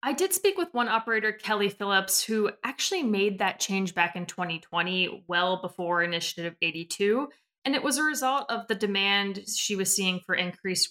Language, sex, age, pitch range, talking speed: English, female, 20-39, 180-240 Hz, 180 wpm